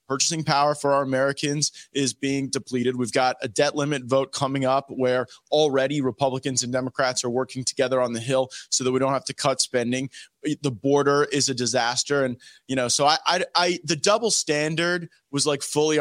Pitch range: 130-155 Hz